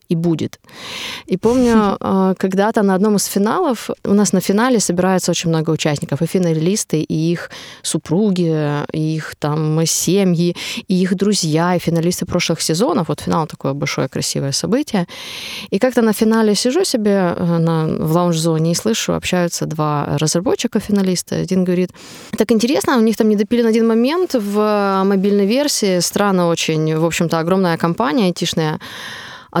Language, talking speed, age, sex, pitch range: Ukrainian, 150 wpm, 20-39, female, 175-225 Hz